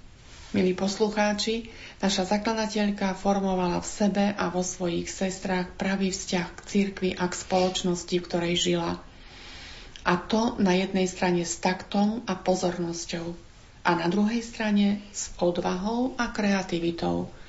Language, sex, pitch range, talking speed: Slovak, female, 175-205 Hz, 130 wpm